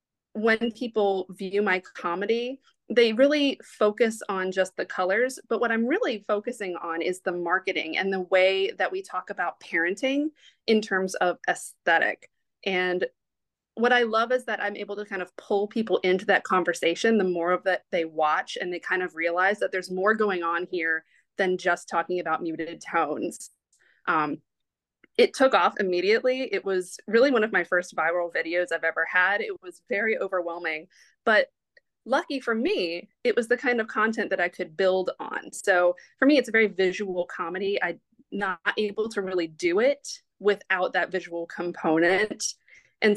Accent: American